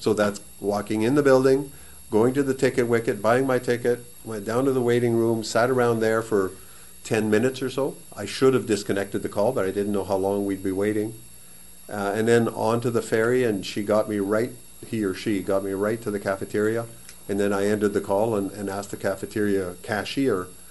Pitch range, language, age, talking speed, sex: 100-120 Hz, English, 50-69, 220 wpm, male